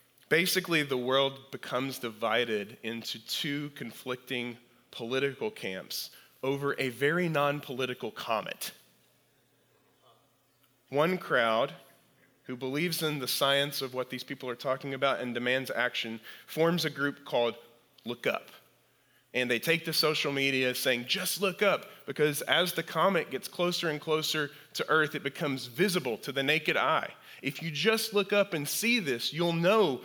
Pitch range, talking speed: 125-155 Hz, 150 wpm